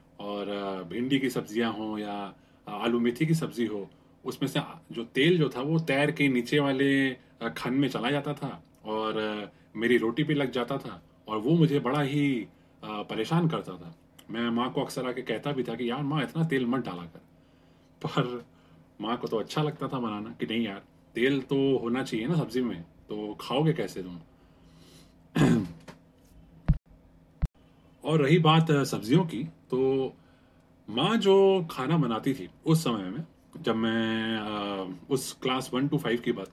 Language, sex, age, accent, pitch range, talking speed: Hindi, male, 30-49, native, 100-140 Hz, 170 wpm